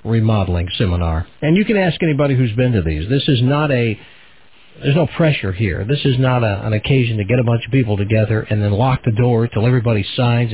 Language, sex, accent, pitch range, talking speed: English, male, American, 105-135 Hz, 220 wpm